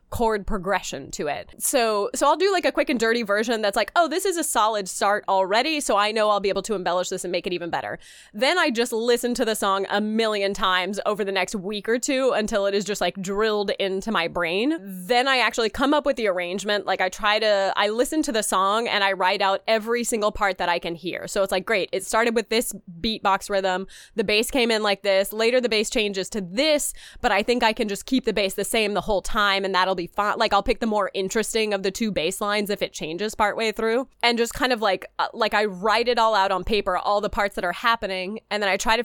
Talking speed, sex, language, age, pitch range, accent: 260 wpm, female, English, 20-39, 195-230 Hz, American